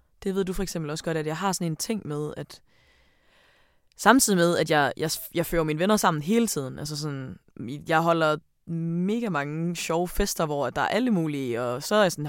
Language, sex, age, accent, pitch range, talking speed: Danish, female, 20-39, native, 150-185 Hz, 220 wpm